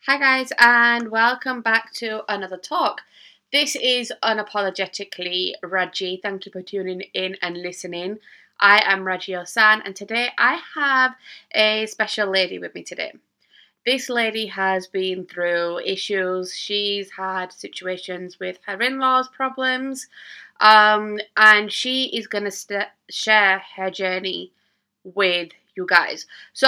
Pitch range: 190-225 Hz